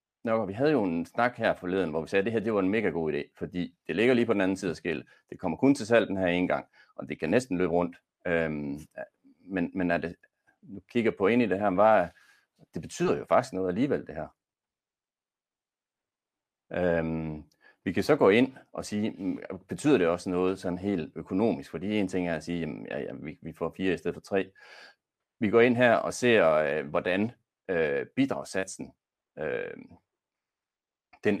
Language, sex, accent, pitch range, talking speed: Danish, male, native, 85-105 Hz, 210 wpm